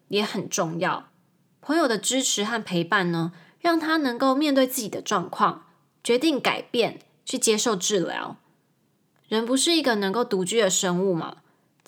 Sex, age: female, 20-39